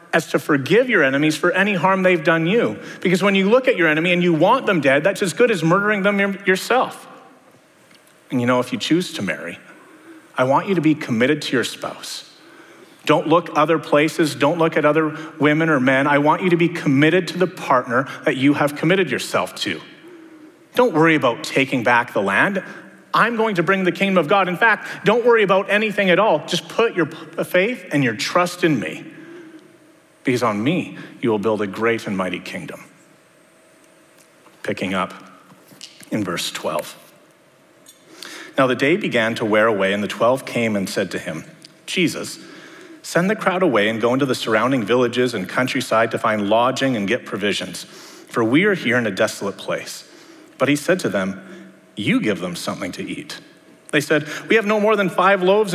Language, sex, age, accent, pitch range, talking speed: English, male, 30-49, American, 140-200 Hz, 195 wpm